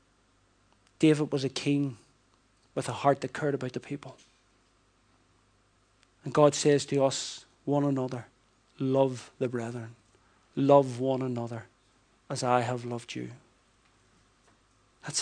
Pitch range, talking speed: 115-145 Hz, 120 wpm